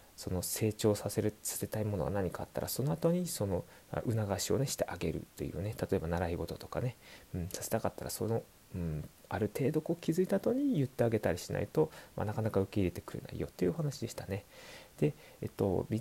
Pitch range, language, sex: 90-135 Hz, Japanese, male